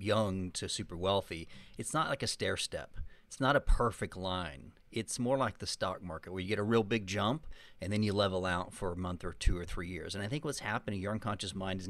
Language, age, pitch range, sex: English, 40-59, 95-115 Hz, male